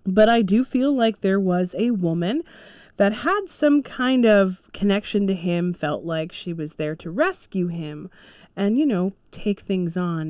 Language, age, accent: English, 30-49, American